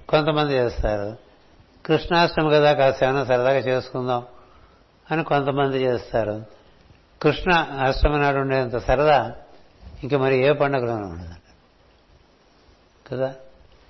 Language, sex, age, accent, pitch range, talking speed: Telugu, male, 60-79, native, 120-145 Hz, 95 wpm